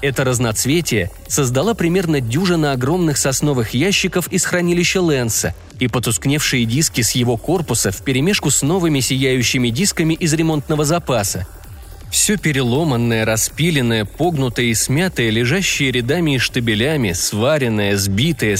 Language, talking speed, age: Russian, 120 wpm, 30-49